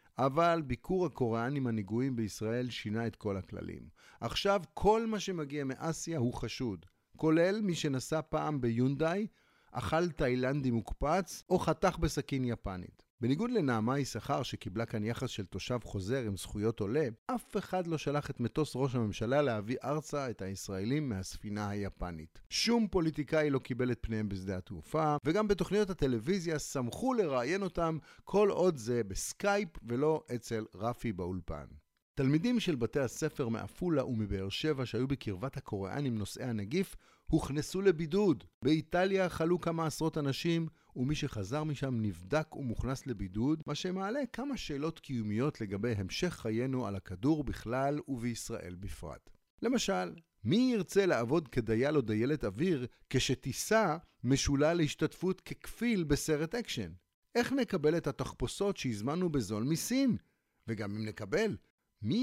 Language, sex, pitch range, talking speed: Hebrew, male, 110-165 Hz, 135 wpm